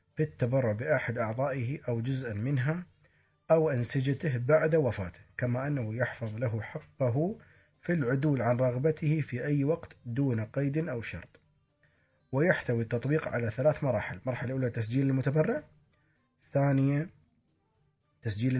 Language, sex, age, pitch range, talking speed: Arabic, male, 30-49, 115-150 Hz, 120 wpm